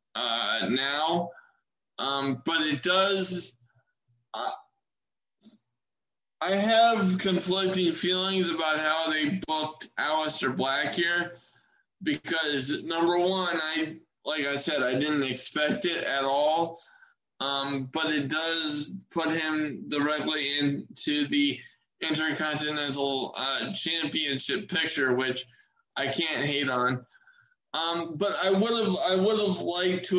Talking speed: 110 wpm